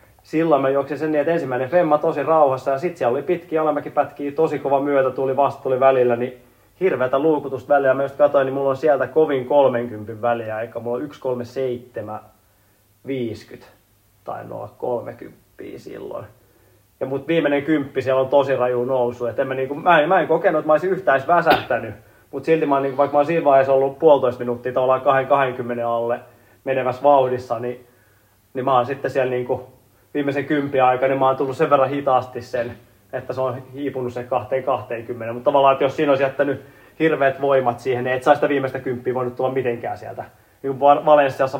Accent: native